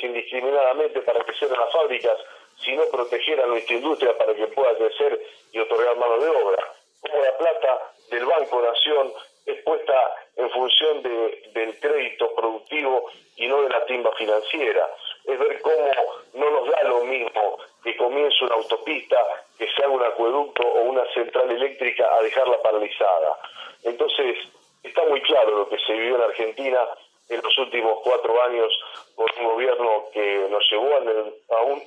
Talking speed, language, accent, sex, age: 160 wpm, Spanish, Argentinian, male, 40-59